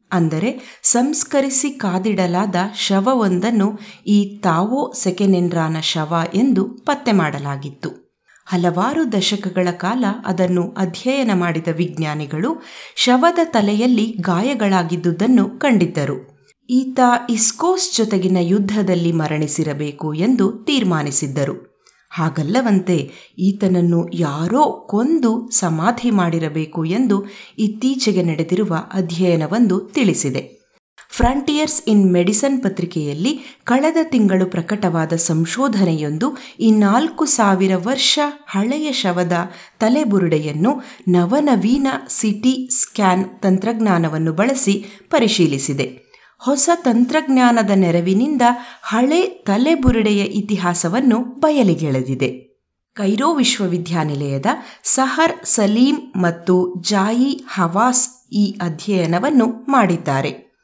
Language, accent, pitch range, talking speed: Kannada, native, 175-250 Hz, 75 wpm